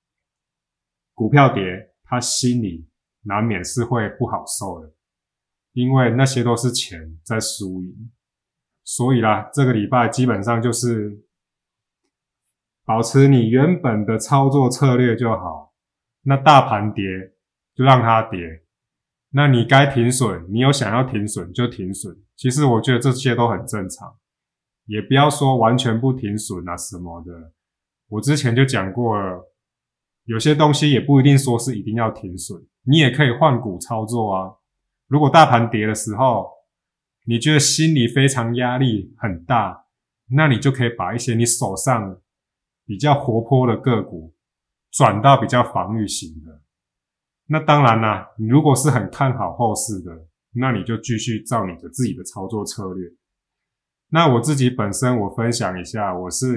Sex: male